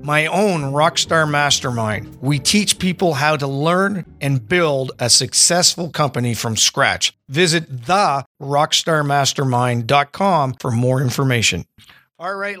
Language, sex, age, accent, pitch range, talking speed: English, male, 50-69, American, 135-175 Hz, 120 wpm